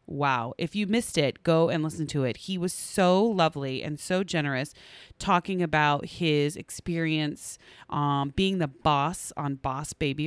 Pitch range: 145-205 Hz